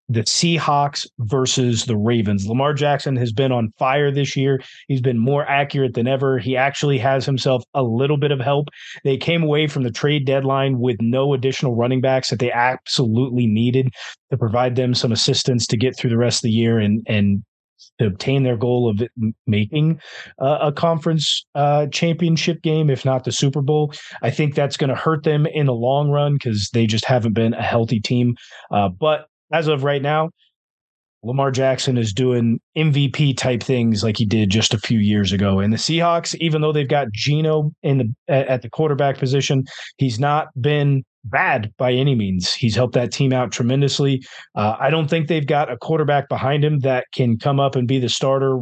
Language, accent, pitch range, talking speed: English, American, 120-145 Hz, 195 wpm